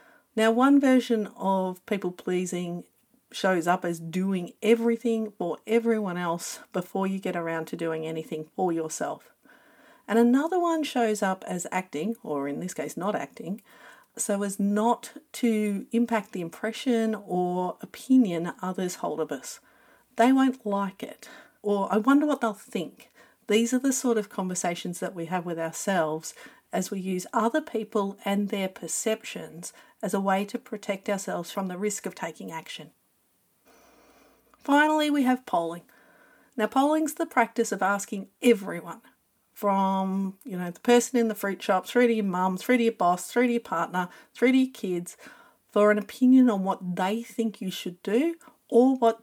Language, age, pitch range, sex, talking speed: English, 50-69, 185-235 Hz, female, 170 wpm